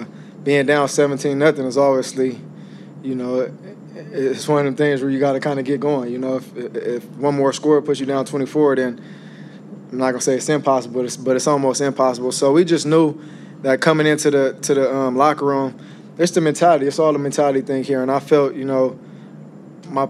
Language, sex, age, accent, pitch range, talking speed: English, male, 20-39, American, 130-145 Hz, 220 wpm